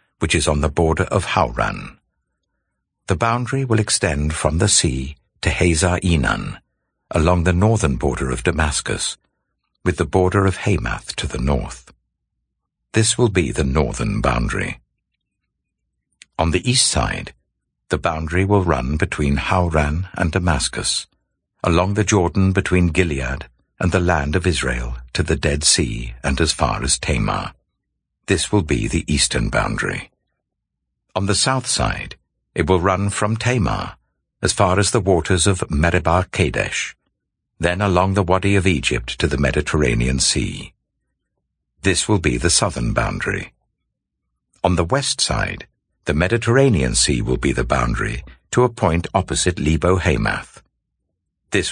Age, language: 60-79, English